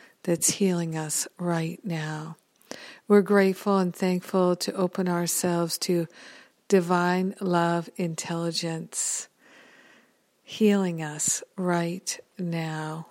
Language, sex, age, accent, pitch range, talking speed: English, female, 60-79, American, 170-195 Hz, 90 wpm